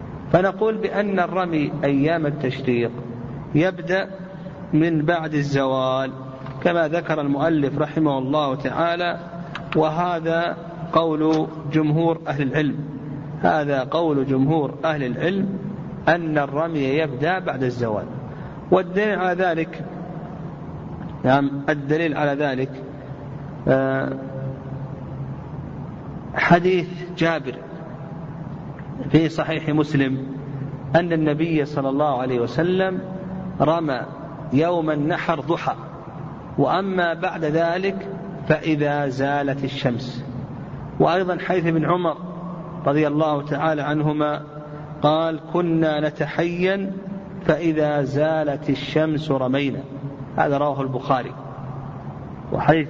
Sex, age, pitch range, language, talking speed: male, 50-69, 140-170 Hz, Arabic, 85 wpm